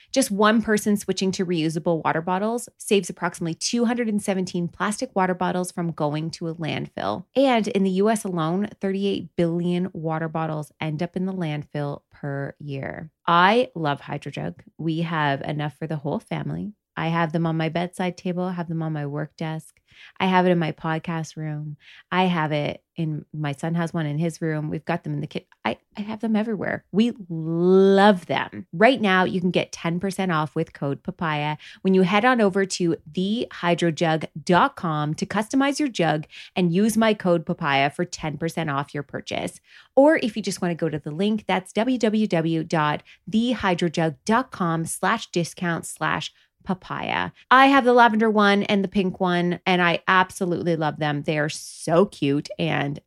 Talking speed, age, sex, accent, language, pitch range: 180 wpm, 20-39, female, American, English, 160-195 Hz